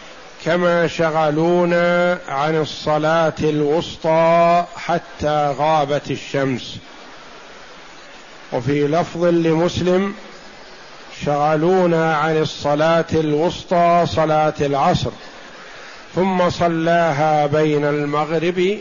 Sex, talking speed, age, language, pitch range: male, 65 wpm, 50-69, Arabic, 150-170 Hz